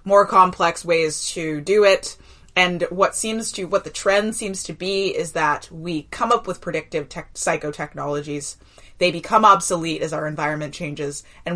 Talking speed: 170 wpm